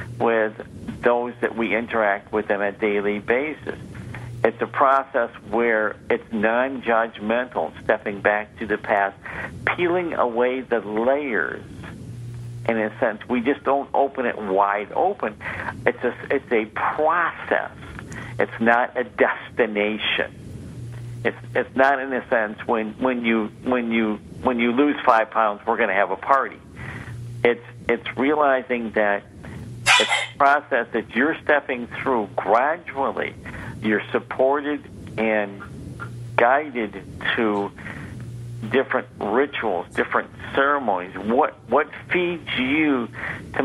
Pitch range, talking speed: 105-125 Hz, 125 wpm